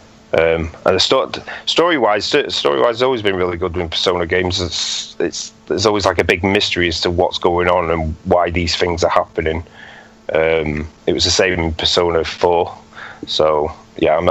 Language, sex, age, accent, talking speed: English, male, 30-49, British, 165 wpm